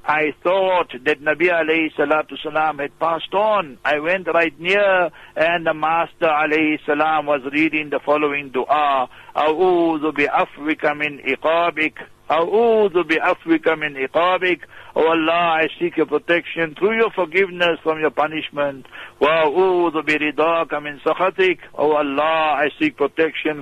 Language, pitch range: English, 150-175 Hz